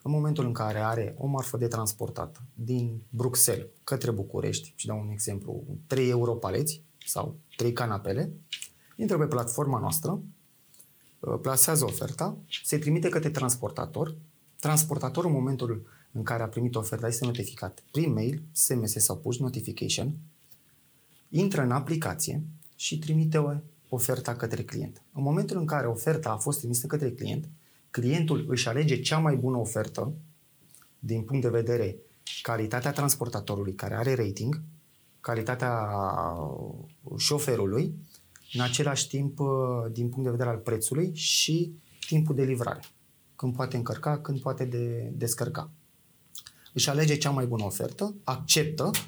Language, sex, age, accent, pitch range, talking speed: Romanian, male, 30-49, native, 120-150 Hz, 135 wpm